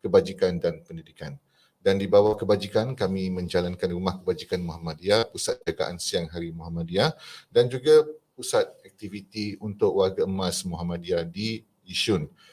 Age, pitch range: 30-49, 90-110 Hz